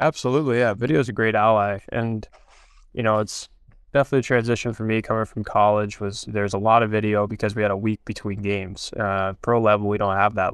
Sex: male